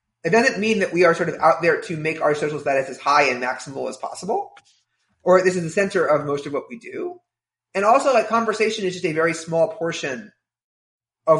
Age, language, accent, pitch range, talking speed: 30-49, English, American, 135-190 Hz, 225 wpm